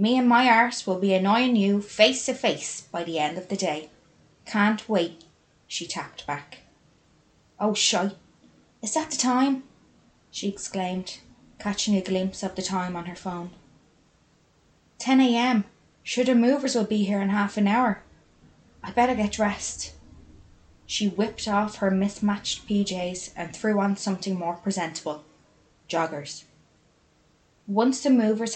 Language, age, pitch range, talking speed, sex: English, 20-39, 175-220 Hz, 145 wpm, female